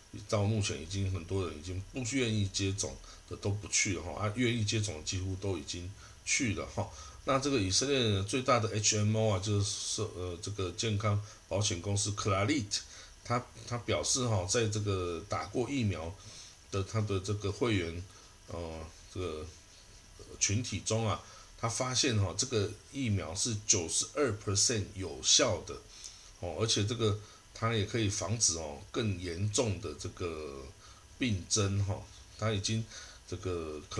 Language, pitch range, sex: Chinese, 90-110 Hz, male